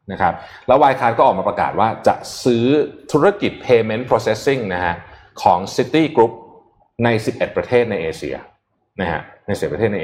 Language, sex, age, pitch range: Thai, male, 20-39, 95-140 Hz